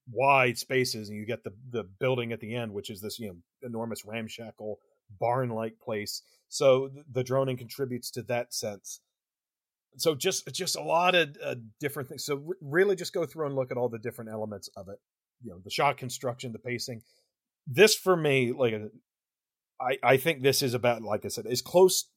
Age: 40-59